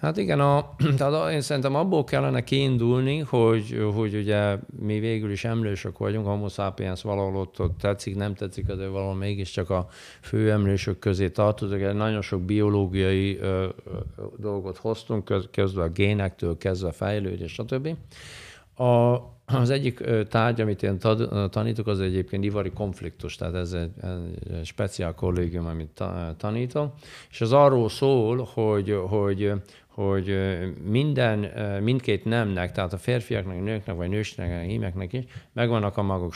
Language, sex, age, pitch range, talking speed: Hungarian, male, 50-69, 95-115 Hz, 145 wpm